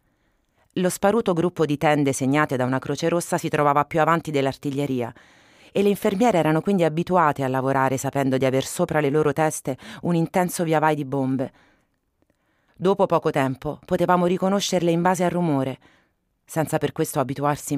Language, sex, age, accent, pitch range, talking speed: Italian, female, 30-49, native, 145-190 Hz, 160 wpm